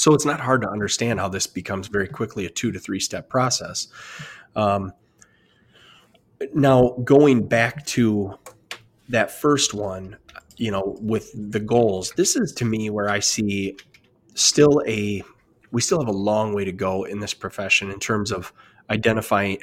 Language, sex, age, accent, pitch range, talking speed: English, male, 20-39, American, 100-130 Hz, 165 wpm